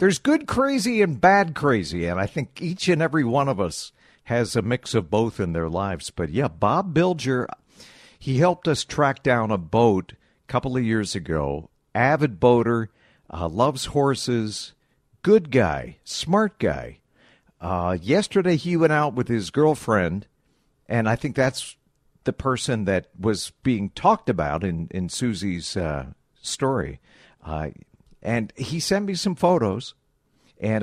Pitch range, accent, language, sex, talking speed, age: 95-150 Hz, American, English, male, 160 wpm, 50-69